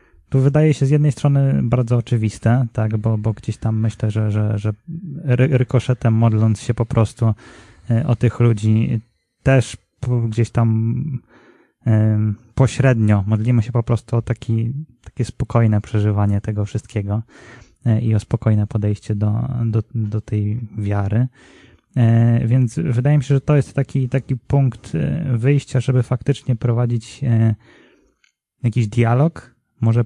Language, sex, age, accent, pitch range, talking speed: Polish, male, 20-39, native, 110-125 Hz, 130 wpm